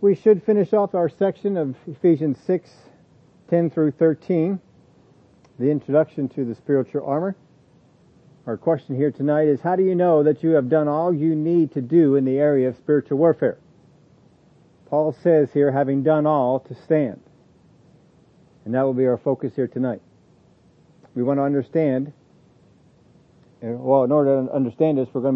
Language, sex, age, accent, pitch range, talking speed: English, male, 50-69, American, 130-160 Hz, 165 wpm